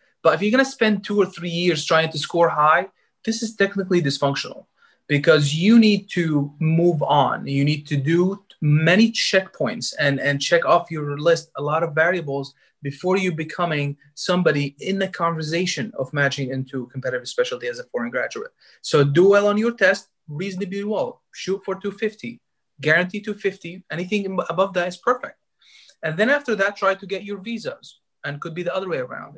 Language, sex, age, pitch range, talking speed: English, male, 30-49, 150-195 Hz, 185 wpm